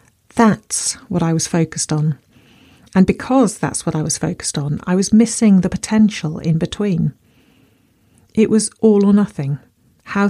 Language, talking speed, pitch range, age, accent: English, 155 wpm, 155-200 Hz, 40-59, British